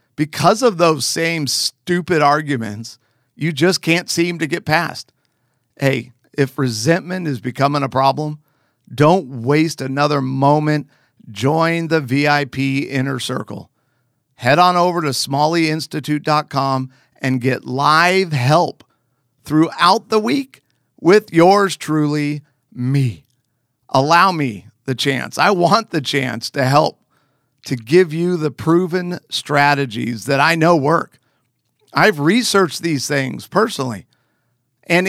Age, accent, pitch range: 50-69, American, 130-175 Hz